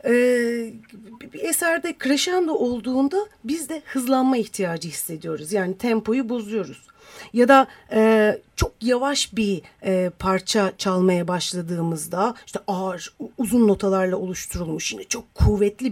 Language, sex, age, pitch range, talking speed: Turkish, female, 40-59, 195-275 Hz, 105 wpm